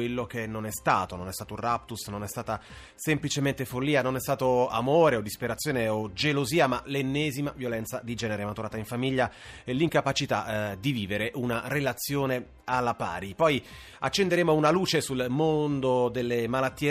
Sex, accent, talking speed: male, native, 165 wpm